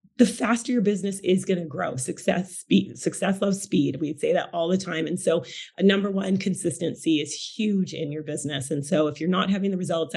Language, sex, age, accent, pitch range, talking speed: English, female, 30-49, American, 165-215 Hz, 225 wpm